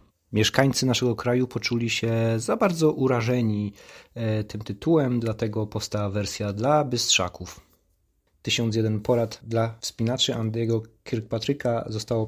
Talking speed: 110 wpm